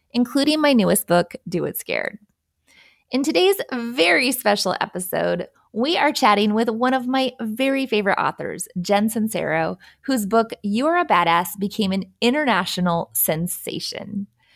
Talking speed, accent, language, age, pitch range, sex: 140 wpm, American, English, 20-39, 195-270 Hz, female